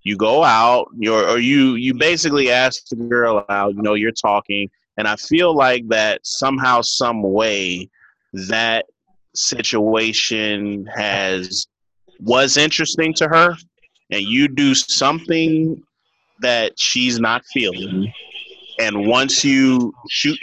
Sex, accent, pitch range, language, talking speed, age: male, American, 110-140 Hz, English, 125 wpm, 30-49